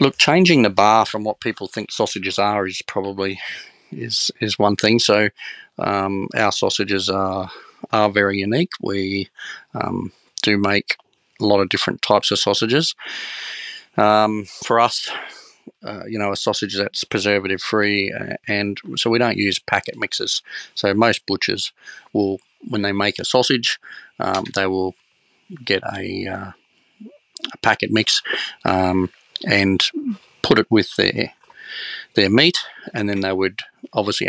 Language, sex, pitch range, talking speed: English, male, 95-110 Hz, 145 wpm